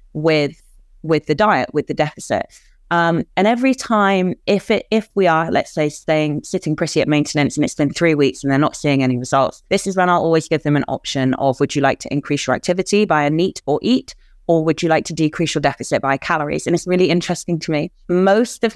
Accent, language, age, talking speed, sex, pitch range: British, English, 30-49, 235 wpm, female, 140-175 Hz